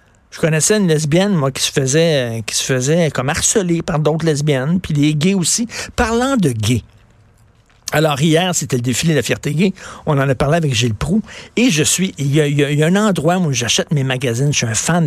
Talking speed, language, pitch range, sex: 240 wpm, French, 125-165 Hz, male